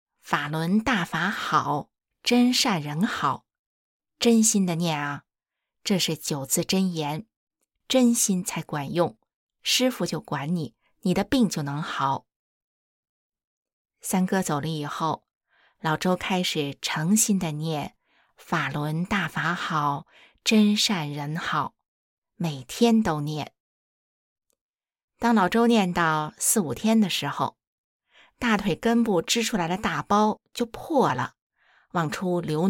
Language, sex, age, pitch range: Chinese, female, 20-39, 155-225 Hz